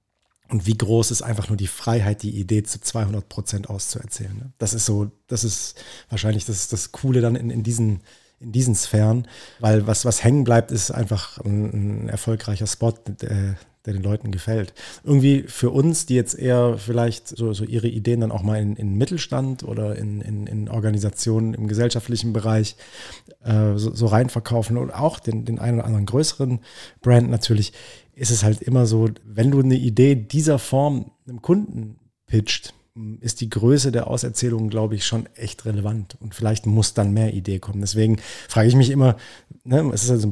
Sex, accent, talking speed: male, German, 190 wpm